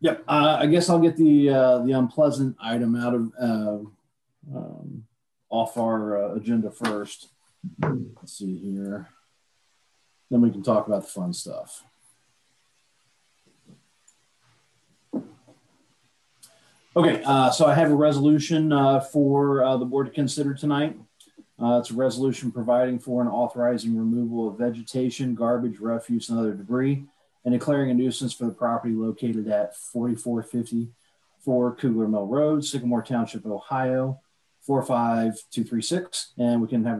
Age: 40-59